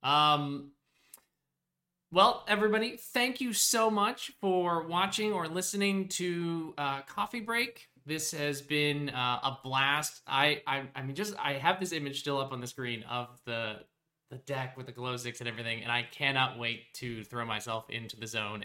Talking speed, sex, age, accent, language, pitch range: 175 wpm, male, 20-39, American, English, 115-170 Hz